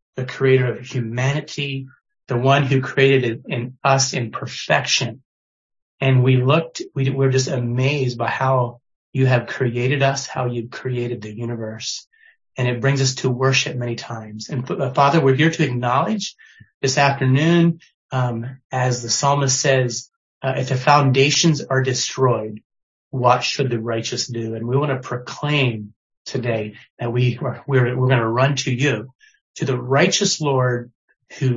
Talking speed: 160 wpm